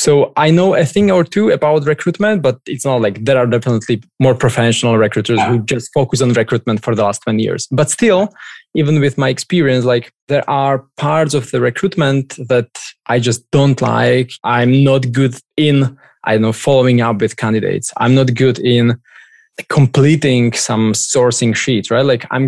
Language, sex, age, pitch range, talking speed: English, male, 20-39, 115-140 Hz, 185 wpm